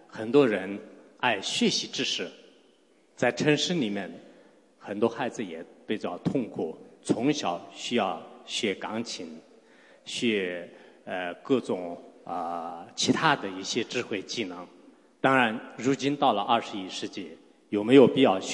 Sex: male